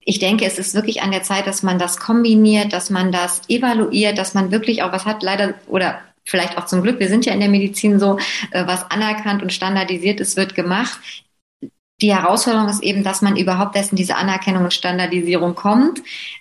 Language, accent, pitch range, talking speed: German, German, 190-215 Hz, 205 wpm